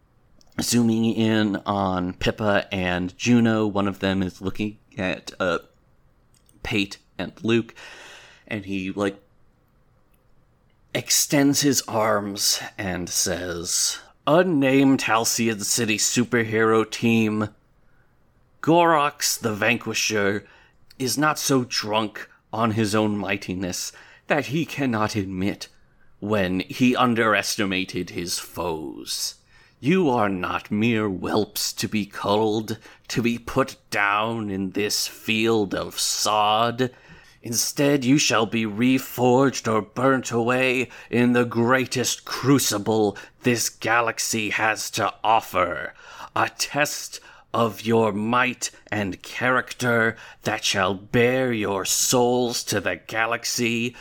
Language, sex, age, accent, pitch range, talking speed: English, male, 30-49, American, 105-120 Hz, 110 wpm